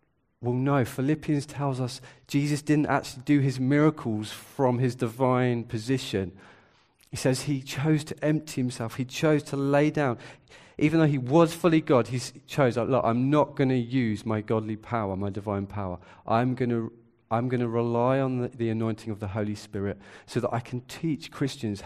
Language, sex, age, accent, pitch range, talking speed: English, male, 40-59, British, 110-140 Hz, 180 wpm